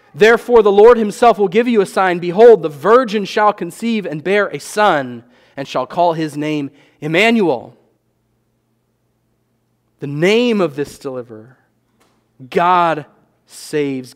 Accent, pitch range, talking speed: American, 145-210 Hz, 130 wpm